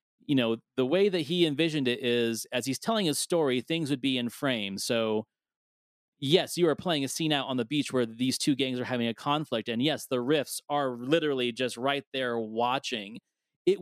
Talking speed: 215 wpm